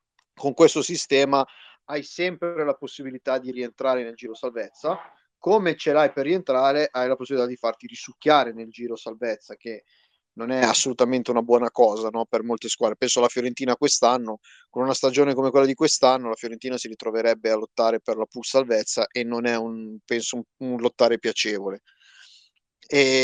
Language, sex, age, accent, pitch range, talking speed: Italian, male, 30-49, native, 120-155 Hz, 175 wpm